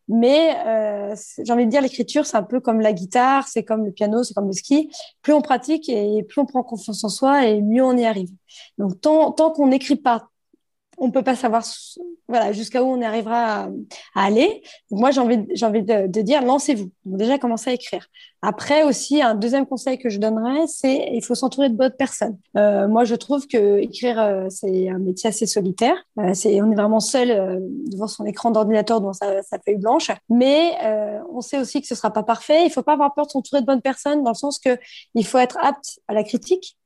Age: 20-39